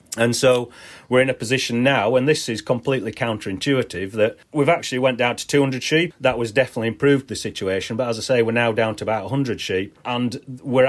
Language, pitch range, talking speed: English, 105-125 Hz, 215 wpm